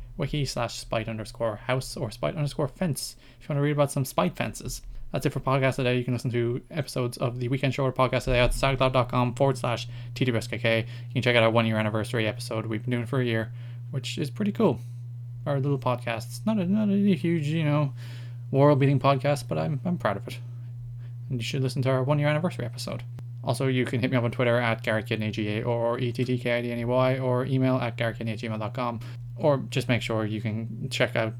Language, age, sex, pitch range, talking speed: English, 20-39, male, 115-130 Hz, 220 wpm